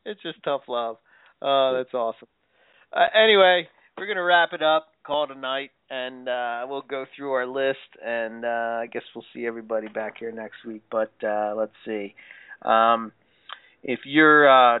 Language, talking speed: English, 180 wpm